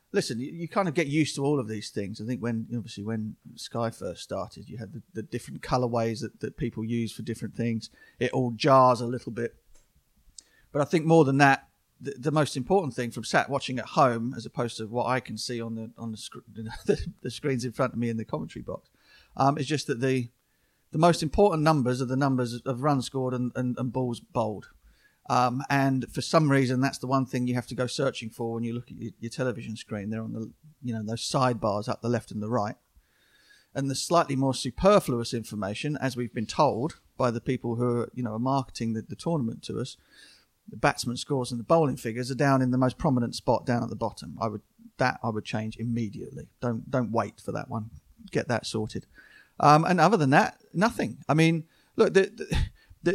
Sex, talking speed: male, 230 wpm